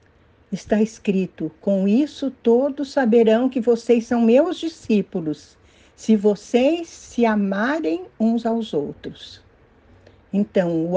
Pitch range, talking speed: 165-230 Hz, 110 wpm